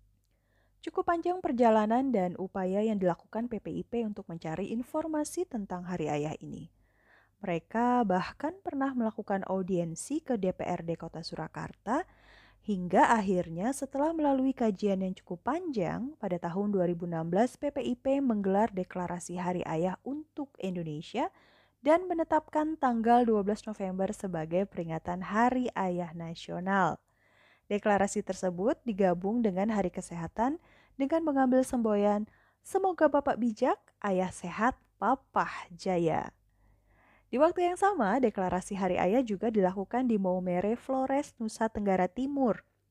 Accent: native